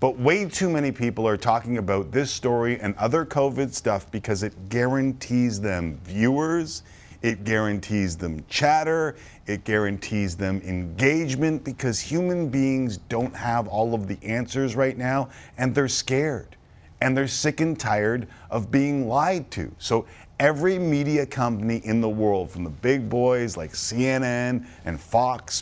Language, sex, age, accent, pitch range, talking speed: English, male, 40-59, American, 105-150 Hz, 150 wpm